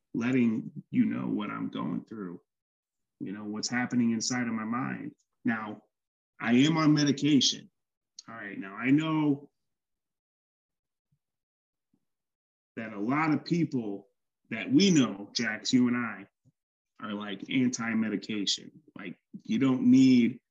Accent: American